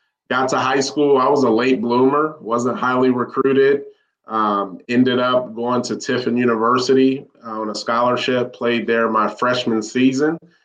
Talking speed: 150 wpm